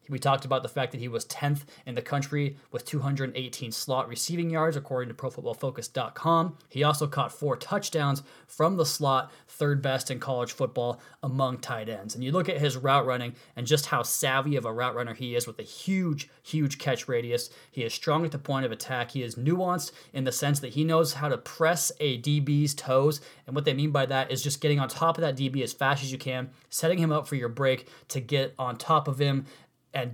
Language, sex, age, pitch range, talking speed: English, male, 20-39, 130-150 Hz, 225 wpm